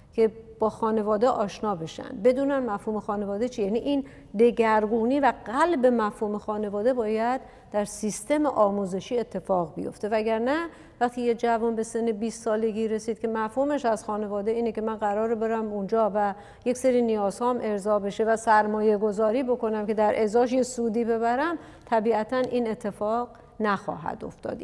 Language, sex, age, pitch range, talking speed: Persian, female, 50-69, 210-245 Hz, 150 wpm